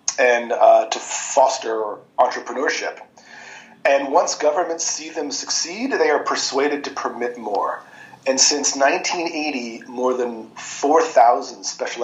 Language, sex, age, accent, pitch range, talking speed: Spanish, male, 40-59, American, 125-165 Hz, 120 wpm